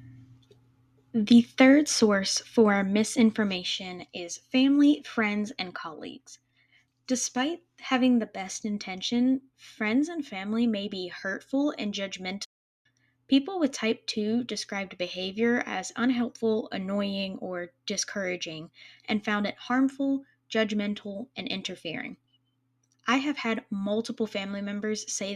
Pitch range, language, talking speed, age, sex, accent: 180-230 Hz, English, 115 wpm, 10-29, female, American